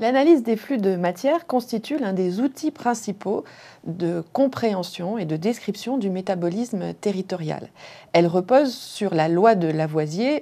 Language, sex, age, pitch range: French, female, 30-49, 175-235 Hz